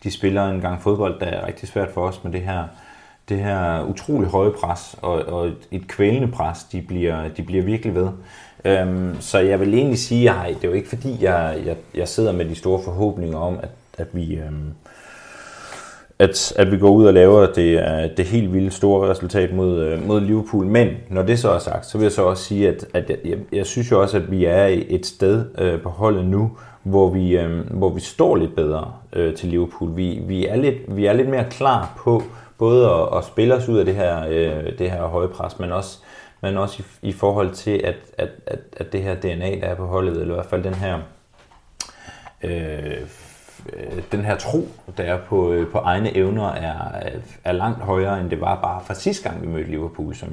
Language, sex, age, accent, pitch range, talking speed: Danish, male, 30-49, native, 85-105 Hz, 195 wpm